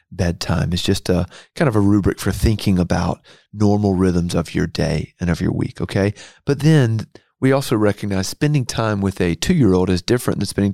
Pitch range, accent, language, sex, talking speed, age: 90-110 Hz, American, English, male, 195 wpm, 30-49